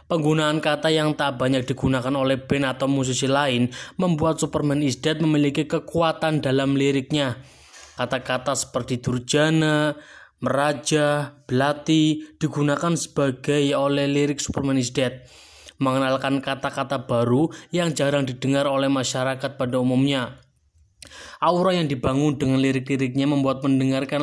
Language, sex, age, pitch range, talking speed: Indonesian, male, 20-39, 130-150 Hz, 120 wpm